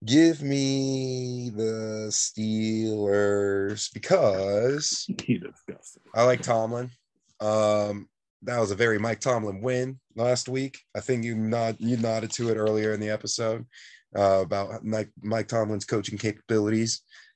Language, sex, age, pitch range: English, male, 20-39, 105-135 Hz